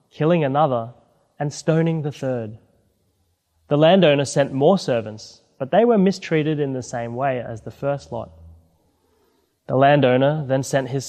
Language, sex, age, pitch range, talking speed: English, male, 20-39, 115-155 Hz, 150 wpm